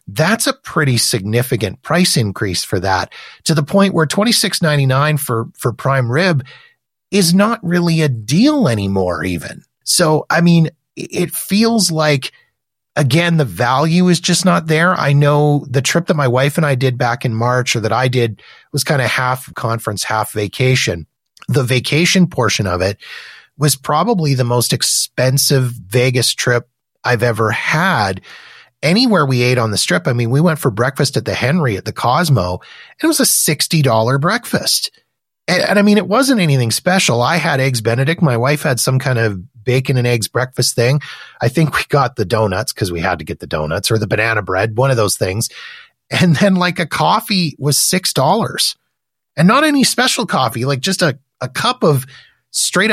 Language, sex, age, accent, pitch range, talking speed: English, male, 30-49, American, 120-175 Hz, 185 wpm